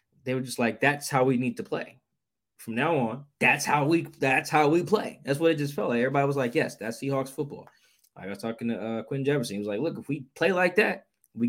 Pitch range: 120-160 Hz